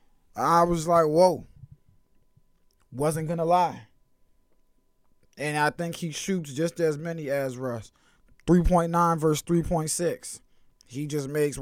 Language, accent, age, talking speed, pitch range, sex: English, American, 20-39, 140 wpm, 130-170 Hz, male